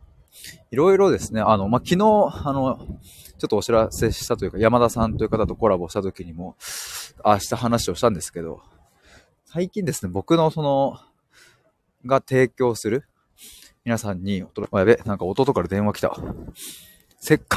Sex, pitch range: male, 100-140 Hz